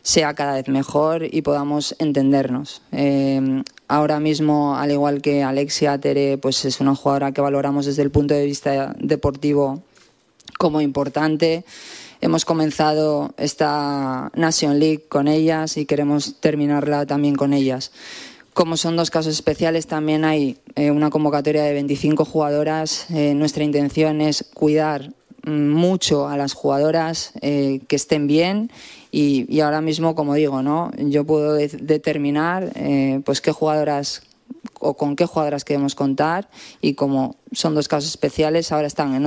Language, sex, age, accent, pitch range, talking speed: Spanish, female, 20-39, Spanish, 140-155 Hz, 150 wpm